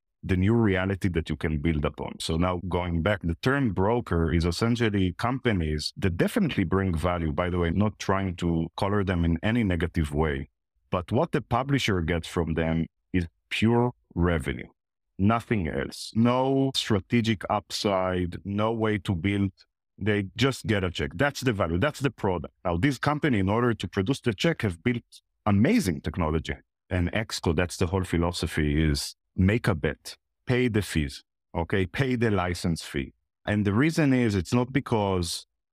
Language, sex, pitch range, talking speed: English, male, 85-115 Hz, 170 wpm